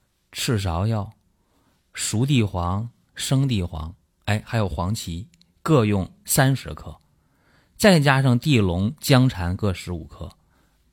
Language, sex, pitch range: Chinese, male, 85-120 Hz